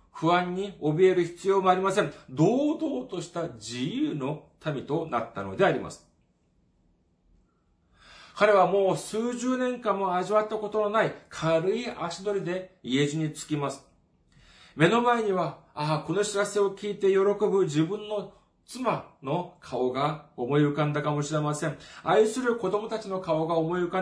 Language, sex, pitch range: Japanese, male, 135-205 Hz